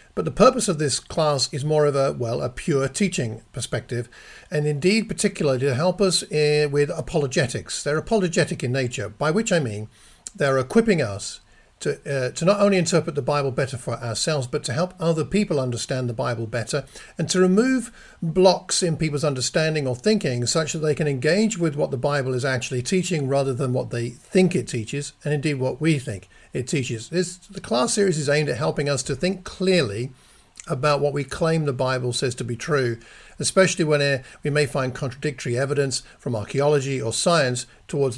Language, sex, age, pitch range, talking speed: English, male, 50-69, 125-165 Hz, 195 wpm